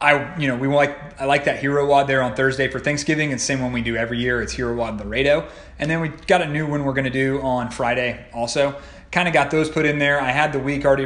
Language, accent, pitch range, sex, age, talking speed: English, American, 130-150 Hz, male, 30-49, 290 wpm